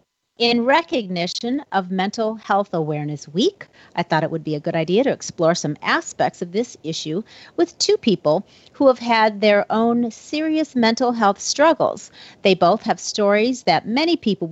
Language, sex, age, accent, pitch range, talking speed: English, female, 40-59, American, 170-225 Hz, 170 wpm